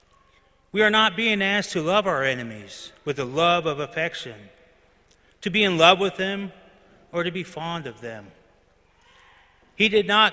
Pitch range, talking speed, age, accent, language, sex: 145-200 Hz, 170 wpm, 30-49, American, English, male